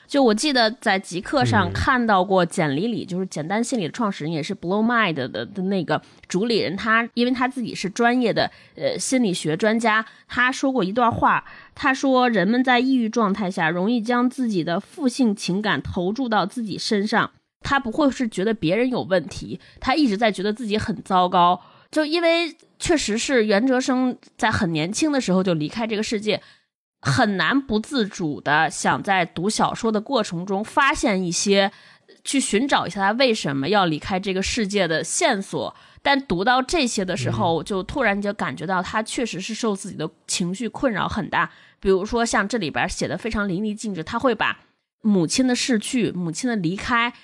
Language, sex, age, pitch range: Chinese, female, 20-39, 185-245 Hz